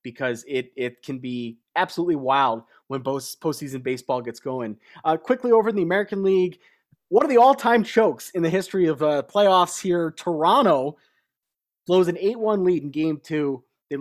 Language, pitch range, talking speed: English, 150-205 Hz, 170 wpm